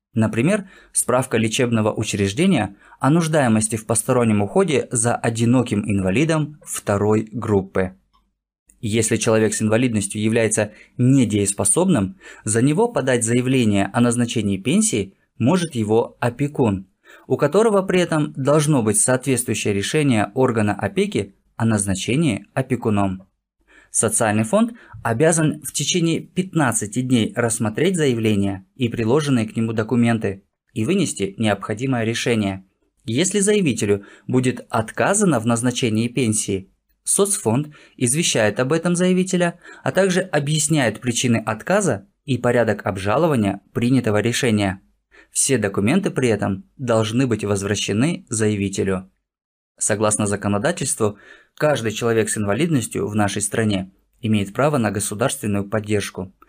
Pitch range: 105-135 Hz